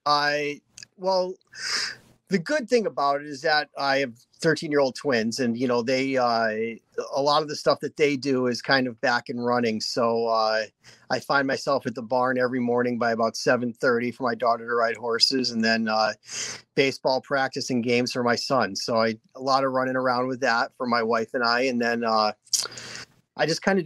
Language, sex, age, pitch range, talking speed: English, male, 30-49, 115-140 Hz, 215 wpm